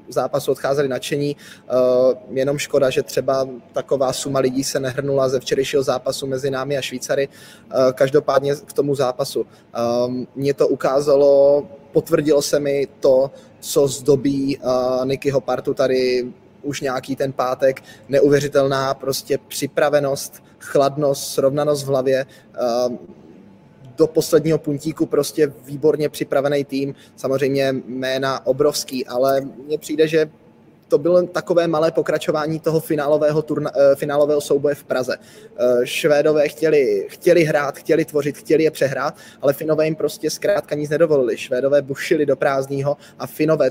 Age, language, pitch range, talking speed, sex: 20-39, Czech, 135-150 Hz, 130 wpm, male